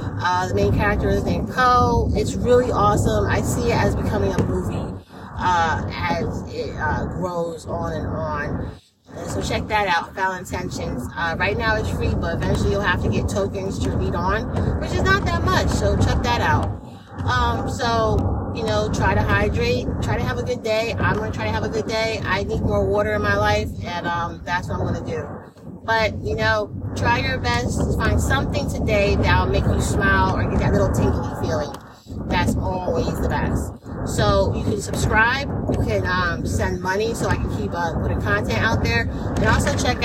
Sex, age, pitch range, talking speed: female, 30-49, 95-120 Hz, 205 wpm